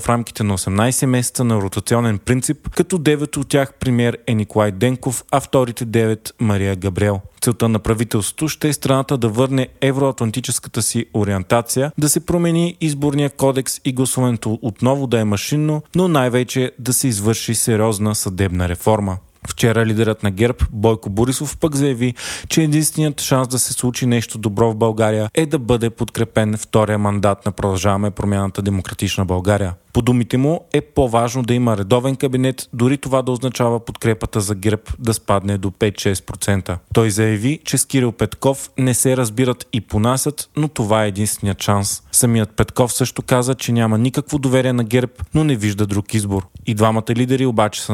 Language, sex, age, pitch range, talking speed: Bulgarian, male, 20-39, 105-130 Hz, 170 wpm